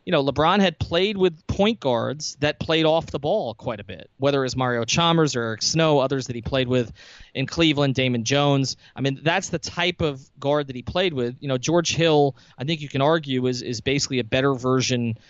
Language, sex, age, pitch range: English, male, 30-49, 130-165 Hz